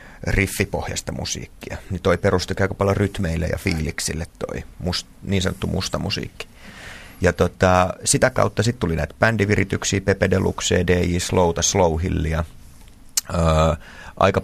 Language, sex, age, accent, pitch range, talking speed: Finnish, male, 30-49, native, 85-100 Hz, 125 wpm